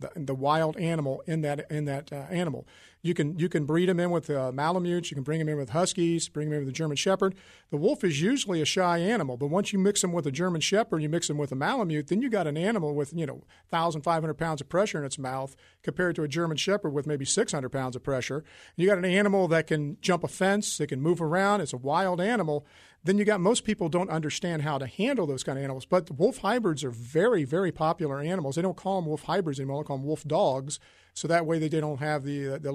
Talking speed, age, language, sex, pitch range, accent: 260 wpm, 50-69, English, male, 145-185 Hz, American